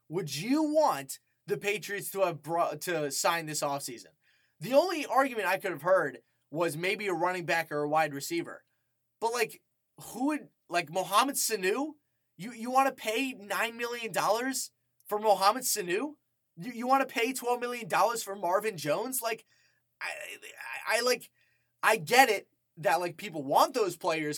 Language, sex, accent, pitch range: English, male, American, 165-225 Hz